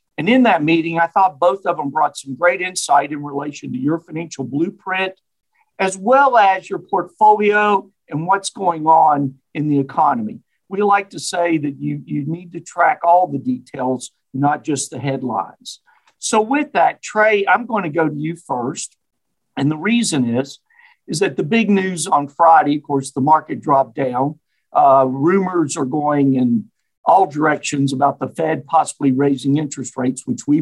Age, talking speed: 50-69, 180 wpm